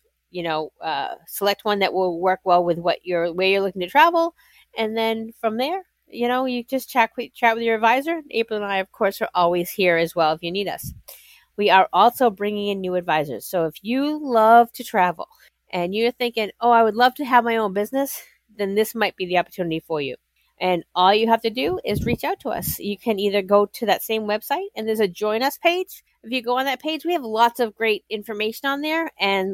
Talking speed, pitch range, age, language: 240 wpm, 205-265 Hz, 40-59, English